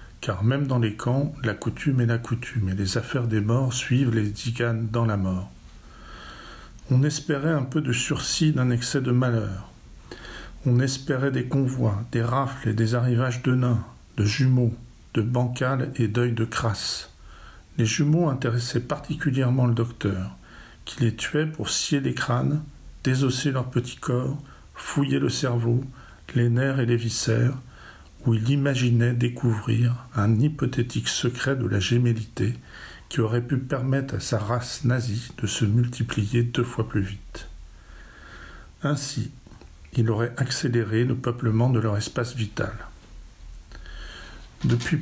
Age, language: 50-69, French